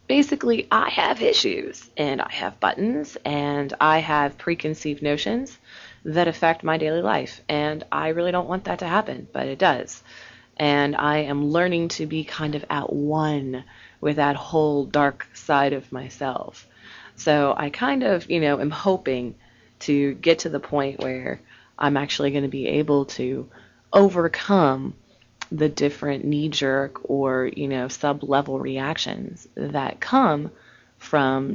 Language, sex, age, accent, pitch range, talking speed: English, female, 20-39, American, 130-155 Hz, 150 wpm